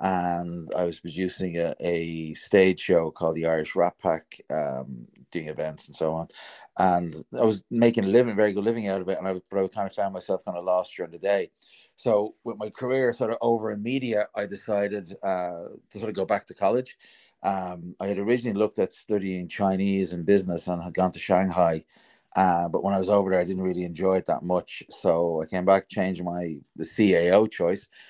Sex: male